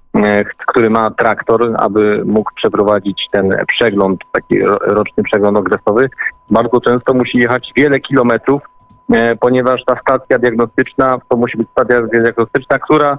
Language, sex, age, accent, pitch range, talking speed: Polish, male, 30-49, native, 115-135 Hz, 125 wpm